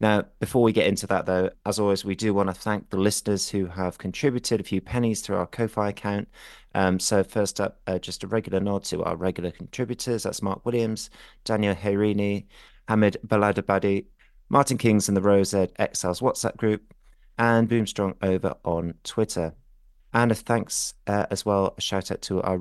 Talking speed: 185 wpm